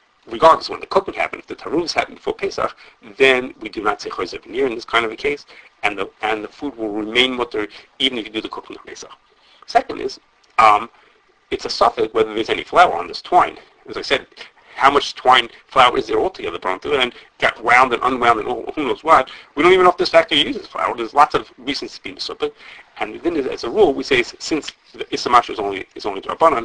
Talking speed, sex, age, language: 235 wpm, male, 40-59, English